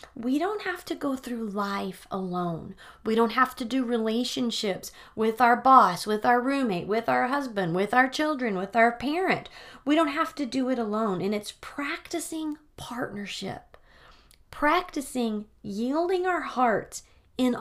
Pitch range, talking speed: 205-270 Hz, 155 wpm